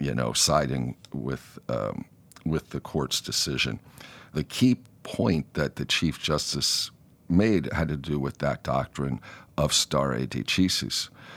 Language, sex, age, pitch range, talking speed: English, male, 50-69, 70-95 Hz, 135 wpm